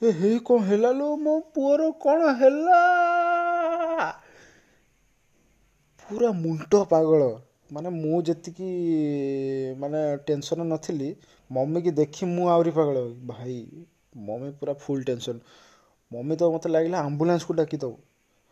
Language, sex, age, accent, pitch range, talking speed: English, male, 20-39, Indian, 135-215 Hz, 125 wpm